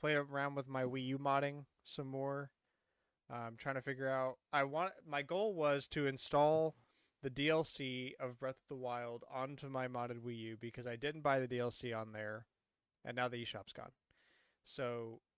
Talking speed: 185 wpm